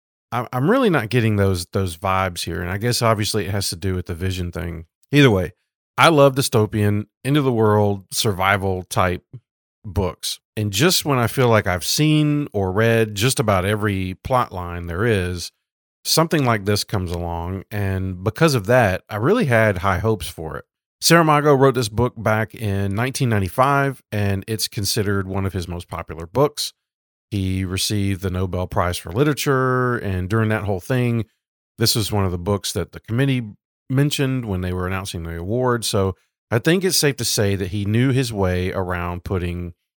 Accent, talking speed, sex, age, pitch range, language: American, 180 wpm, male, 40-59, 95-125 Hz, English